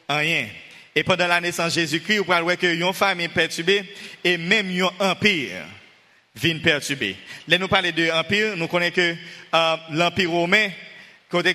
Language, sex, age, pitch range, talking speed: French, male, 30-49, 170-205 Hz, 155 wpm